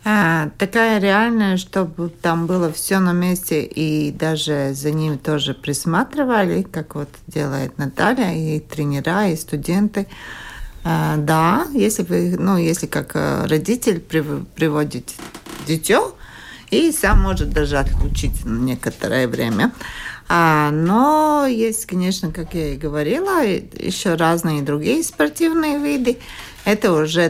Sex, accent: female, native